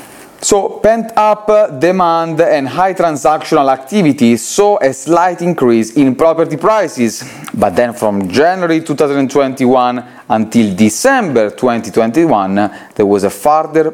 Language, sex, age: English, male, 30-49